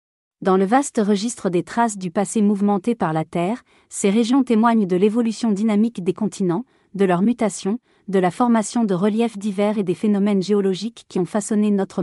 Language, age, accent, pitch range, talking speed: French, 40-59, French, 190-225 Hz, 185 wpm